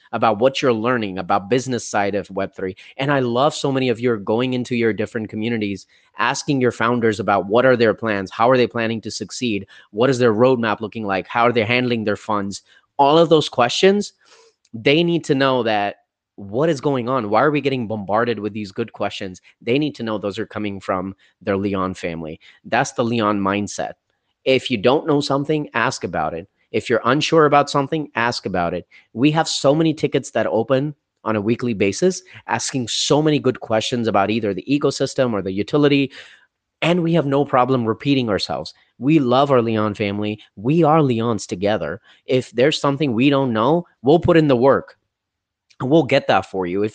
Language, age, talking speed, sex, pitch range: English, 30-49, 200 wpm, male, 105-140 Hz